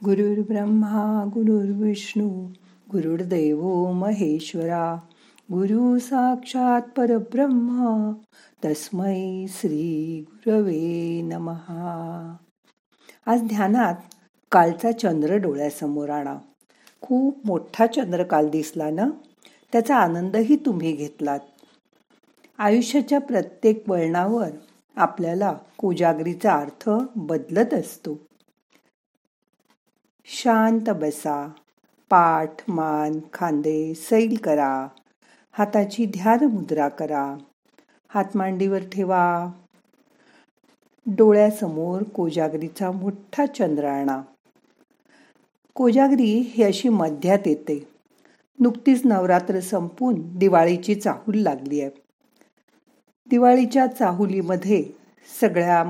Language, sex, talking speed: Marathi, female, 70 wpm